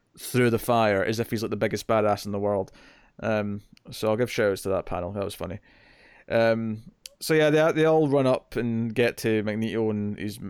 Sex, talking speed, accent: male, 215 wpm, British